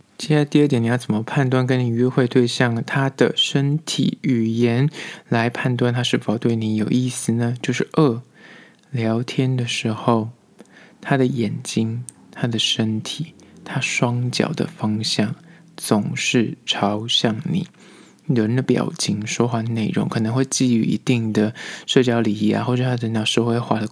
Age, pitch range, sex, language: 20-39, 110-135 Hz, male, Chinese